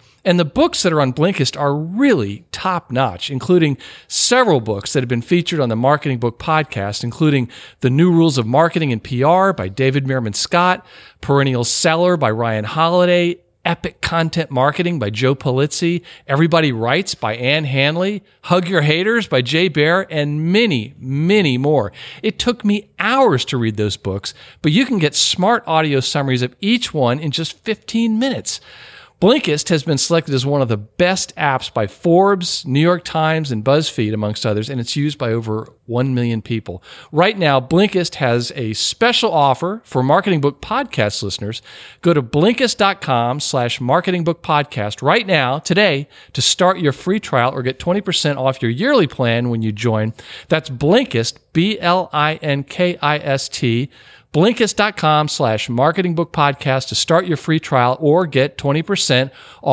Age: 50-69